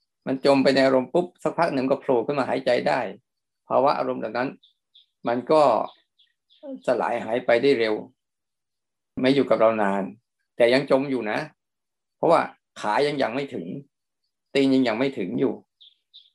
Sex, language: male, Thai